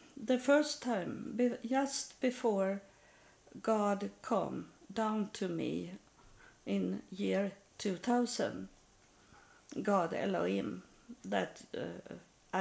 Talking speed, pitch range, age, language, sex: 85 wpm, 195-235 Hz, 50-69, English, female